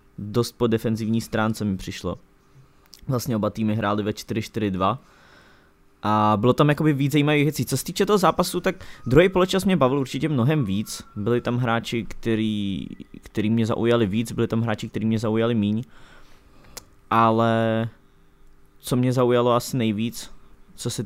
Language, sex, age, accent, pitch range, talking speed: English, male, 20-39, Czech, 105-125 Hz, 155 wpm